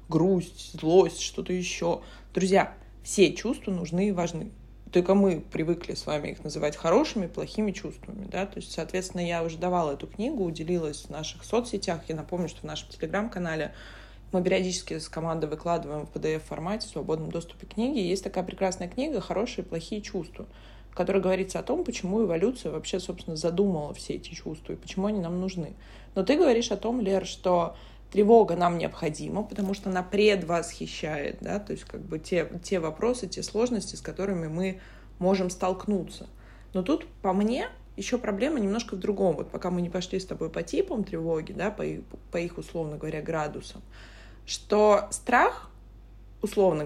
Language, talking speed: Russian, 170 wpm